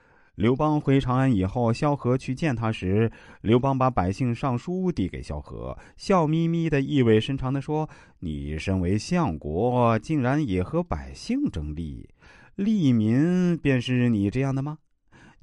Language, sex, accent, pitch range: Chinese, male, native, 90-150 Hz